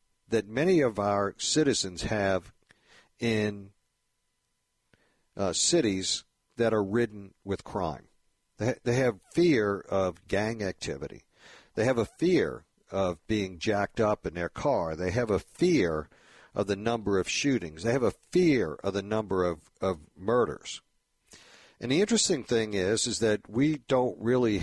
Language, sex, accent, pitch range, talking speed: English, male, American, 95-125 Hz, 150 wpm